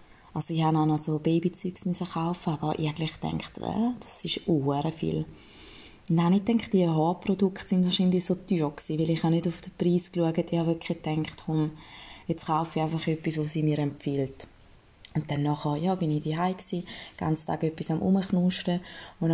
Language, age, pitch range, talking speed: German, 20-39, 150-180 Hz, 200 wpm